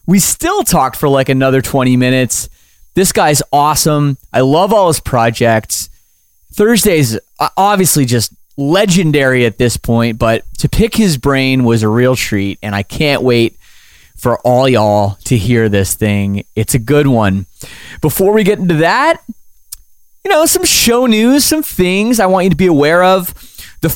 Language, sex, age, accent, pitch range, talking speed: English, male, 30-49, American, 125-190 Hz, 170 wpm